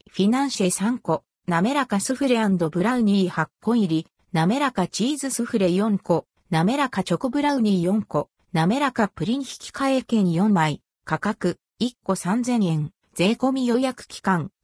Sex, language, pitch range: female, Japanese, 185-250 Hz